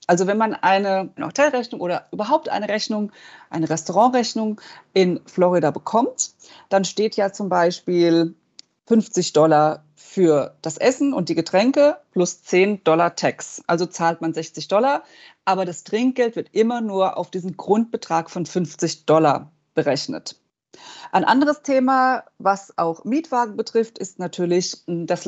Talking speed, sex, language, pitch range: 140 wpm, female, German, 175-230 Hz